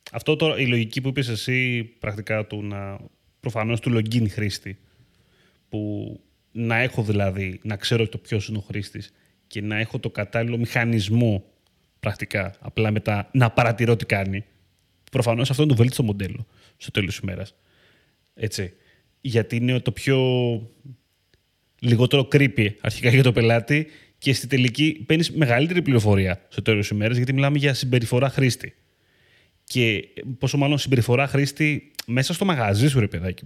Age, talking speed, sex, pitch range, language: 30-49, 150 wpm, male, 105-135 Hz, Greek